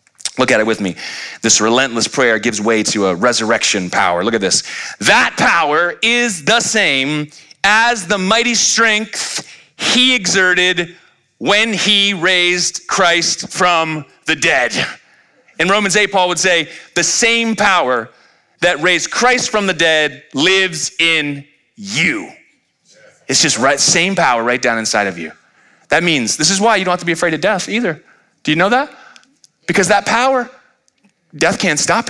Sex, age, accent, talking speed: male, 30-49, American, 165 wpm